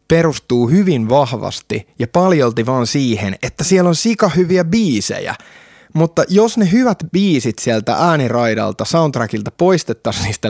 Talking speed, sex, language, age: 130 wpm, male, Finnish, 20-39